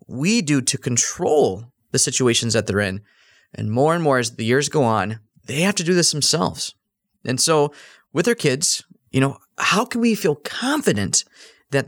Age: 30-49